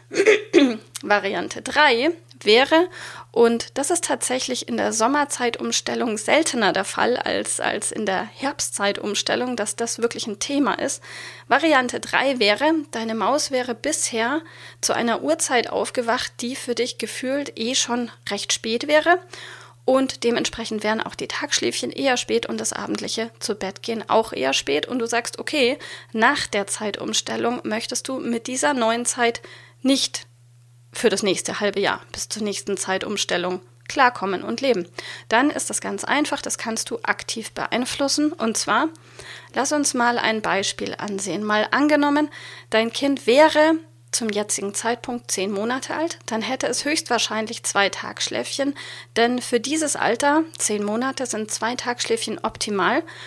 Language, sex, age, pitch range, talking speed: German, female, 30-49, 210-275 Hz, 145 wpm